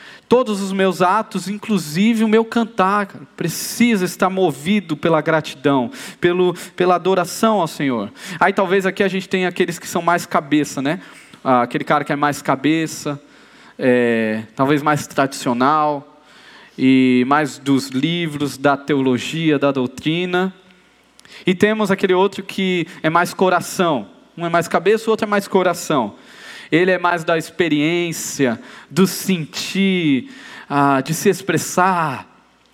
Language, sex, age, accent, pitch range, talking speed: Portuguese, male, 20-39, Brazilian, 150-190 Hz, 135 wpm